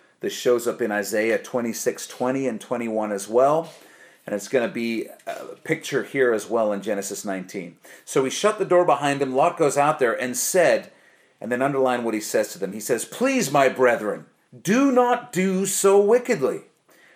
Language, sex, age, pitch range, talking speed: English, male, 40-59, 115-145 Hz, 190 wpm